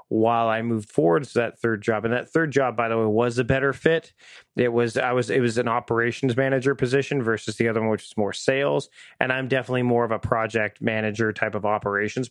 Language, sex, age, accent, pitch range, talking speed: English, male, 30-49, American, 115-140 Hz, 235 wpm